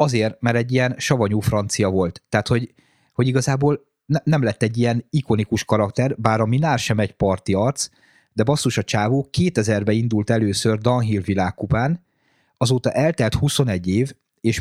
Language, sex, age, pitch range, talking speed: Hungarian, male, 30-49, 110-130 Hz, 160 wpm